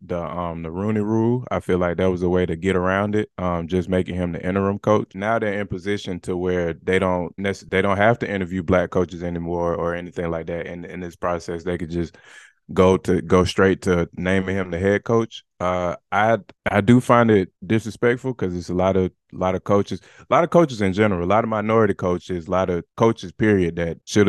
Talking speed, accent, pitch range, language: 235 wpm, American, 85-100 Hz, English